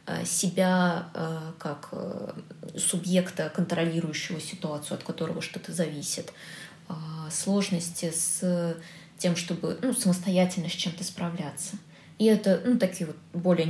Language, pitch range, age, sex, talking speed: Russian, 170-200 Hz, 20-39, female, 105 wpm